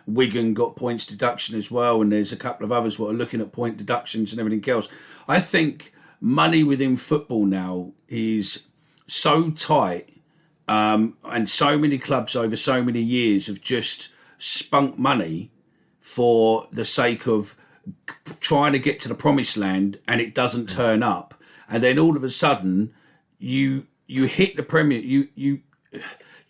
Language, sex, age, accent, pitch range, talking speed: English, male, 40-59, British, 110-145 Hz, 165 wpm